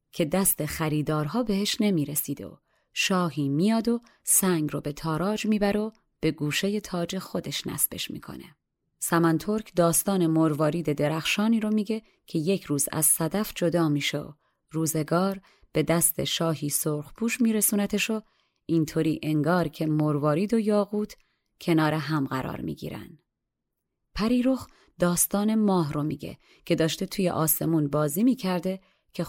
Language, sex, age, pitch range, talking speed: Persian, female, 30-49, 155-205 Hz, 135 wpm